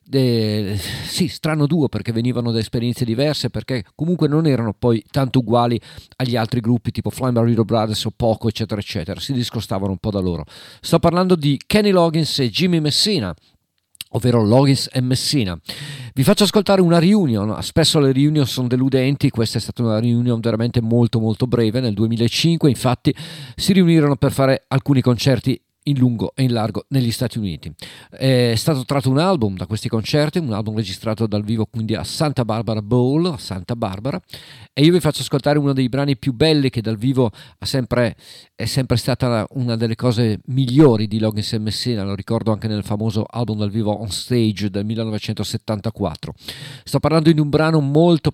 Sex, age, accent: male, 40-59, native